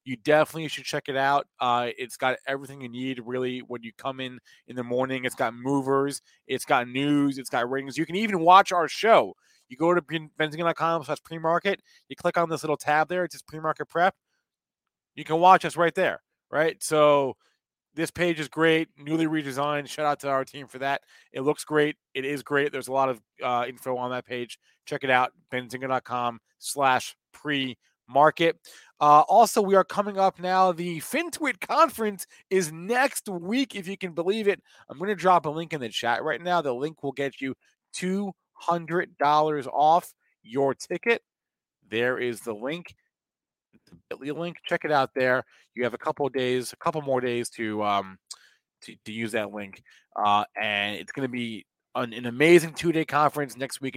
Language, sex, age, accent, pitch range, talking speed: English, male, 30-49, American, 125-170 Hz, 190 wpm